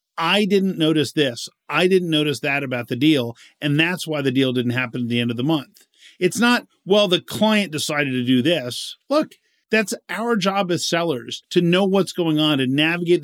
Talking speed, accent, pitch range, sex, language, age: 210 wpm, American, 140-195 Hz, male, English, 40-59